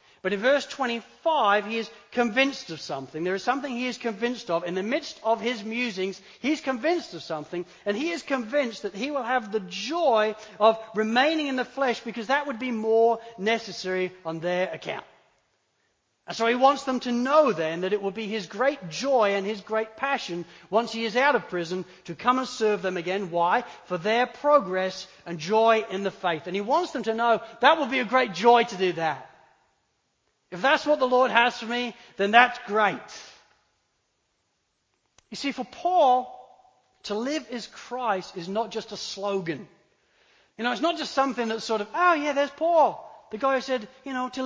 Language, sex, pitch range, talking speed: English, male, 195-265 Hz, 200 wpm